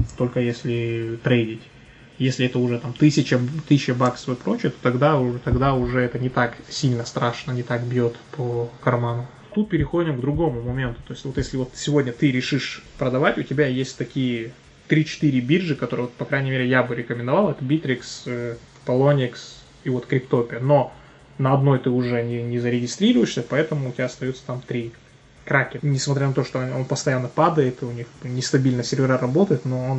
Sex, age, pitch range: male, 20-39, 125-145 Hz